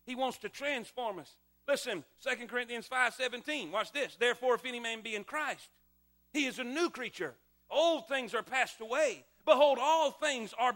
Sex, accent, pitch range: male, American, 245-315 Hz